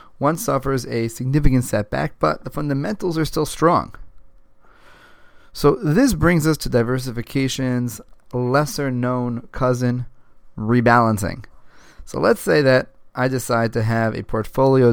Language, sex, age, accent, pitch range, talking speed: English, male, 30-49, American, 115-145 Hz, 125 wpm